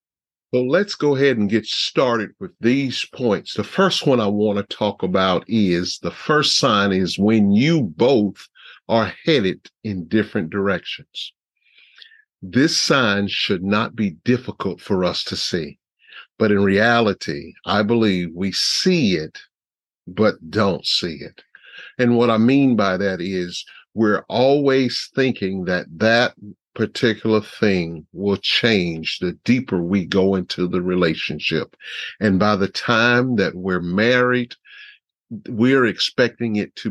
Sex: male